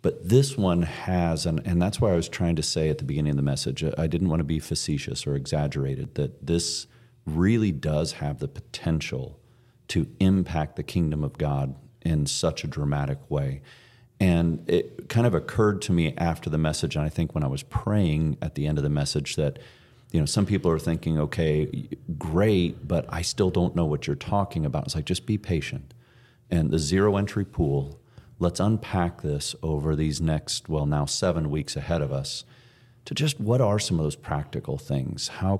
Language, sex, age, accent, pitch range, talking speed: English, male, 40-59, American, 75-100 Hz, 200 wpm